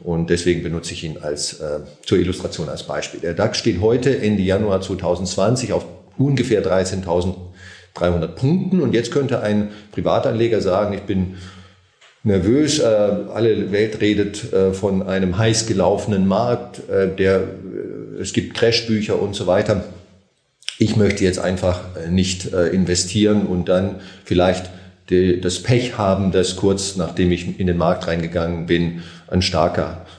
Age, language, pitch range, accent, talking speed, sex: 40-59, German, 90-105 Hz, German, 150 wpm, male